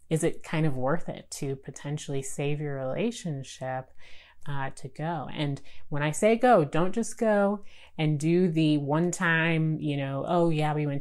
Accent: American